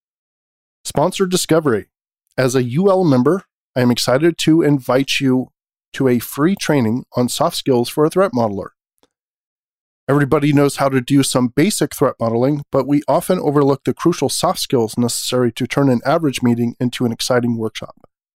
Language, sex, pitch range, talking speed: English, male, 120-145 Hz, 165 wpm